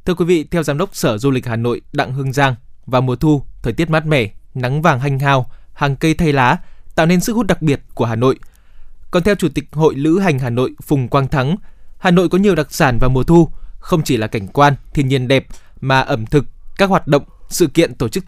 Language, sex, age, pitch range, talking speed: Vietnamese, male, 20-39, 130-170 Hz, 255 wpm